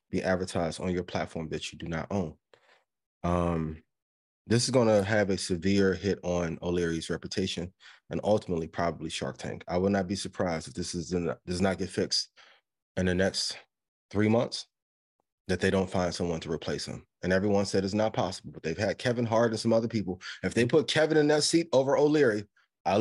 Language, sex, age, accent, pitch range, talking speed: English, male, 20-39, American, 90-115 Hz, 205 wpm